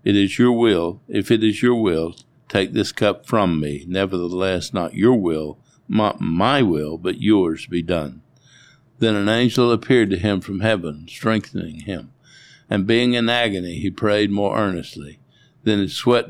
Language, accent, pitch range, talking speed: English, American, 95-120 Hz, 170 wpm